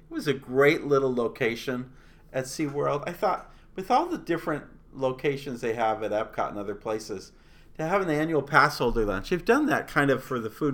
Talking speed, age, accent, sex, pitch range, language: 205 wpm, 50-69, American, male, 110-145 Hz, English